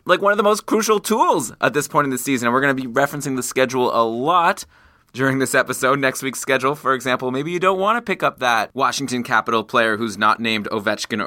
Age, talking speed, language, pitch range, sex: 20-39, 245 wpm, English, 130-170 Hz, male